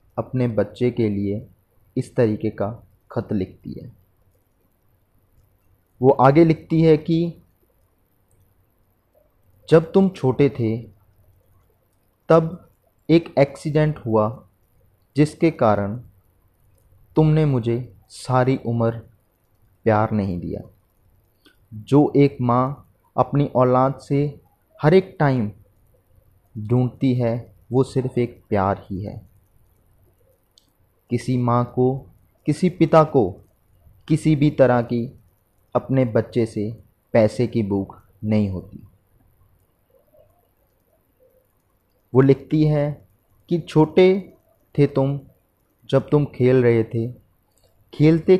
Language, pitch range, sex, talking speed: Hindi, 100-135 Hz, male, 100 wpm